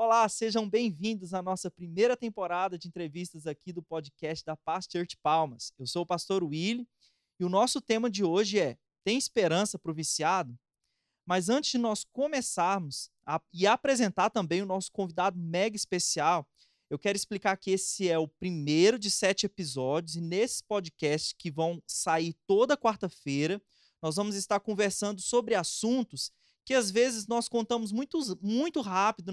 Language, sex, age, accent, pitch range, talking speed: Portuguese, male, 20-39, Brazilian, 175-215 Hz, 160 wpm